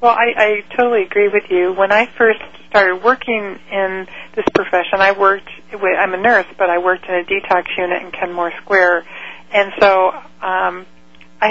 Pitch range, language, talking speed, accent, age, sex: 180-210 Hz, English, 180 wpm, American, 40-59, female